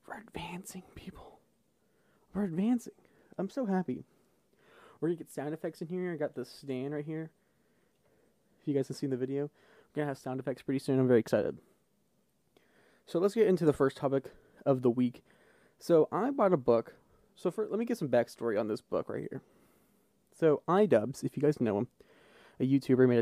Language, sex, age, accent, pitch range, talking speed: English, male, 20-39, American, 130-180 Hz, 200 wpm